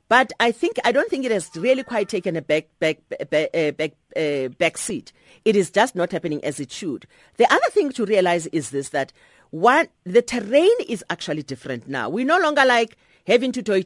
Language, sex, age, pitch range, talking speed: English, female, 40-59, 165-245 Hz, 210 wpm